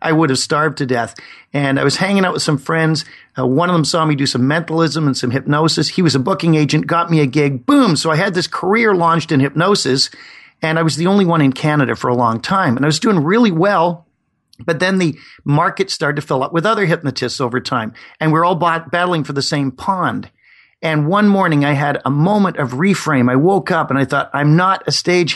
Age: 40-59